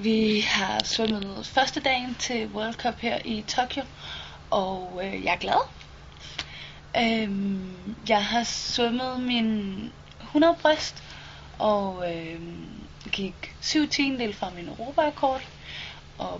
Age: 20-39